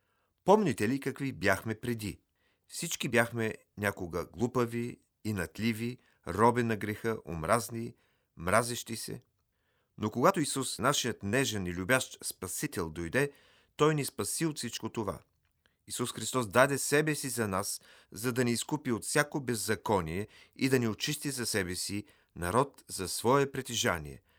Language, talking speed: Bulgarian, 140 wpm